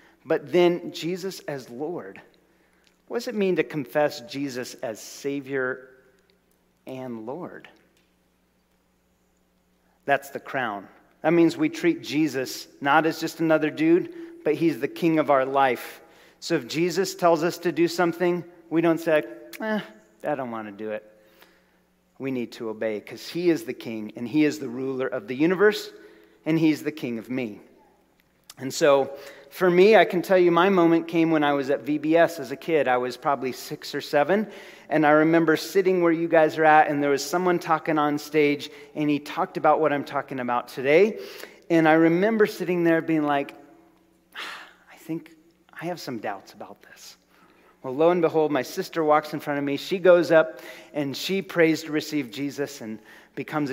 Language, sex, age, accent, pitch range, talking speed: English, male, 40-59, American, 130-170 Hz, 185 wpm